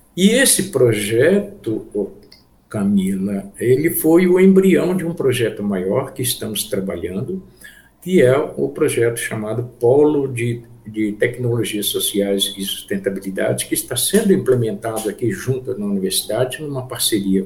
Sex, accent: male, Brazilian